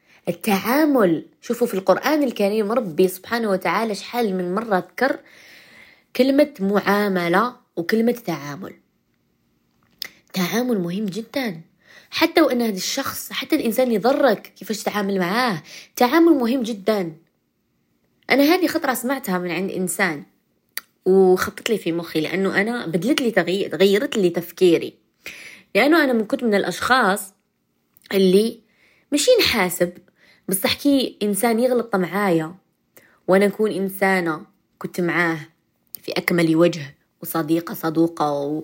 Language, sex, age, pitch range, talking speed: Arabic, female, 20-39, 175-230 Hz, 115 wpm